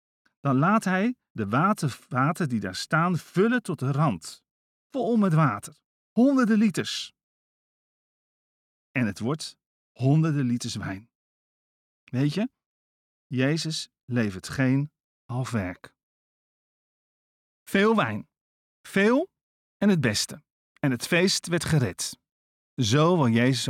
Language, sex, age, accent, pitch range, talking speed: Dutch, male, 40-59, Dutch, 110-160 Hz, 115 wpm